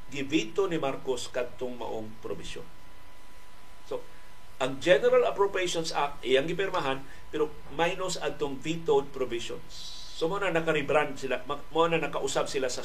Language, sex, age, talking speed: Filipino, male, 50-69, 125 wpm